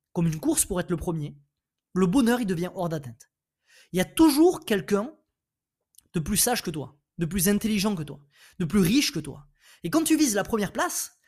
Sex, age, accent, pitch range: male, 20-39, French, 165-245 Hz